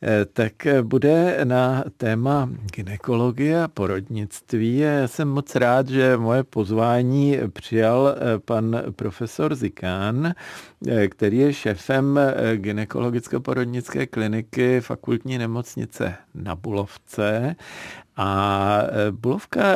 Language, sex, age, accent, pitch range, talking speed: Czech, male, 50-69, native, 105-130 Hz, 90 wpm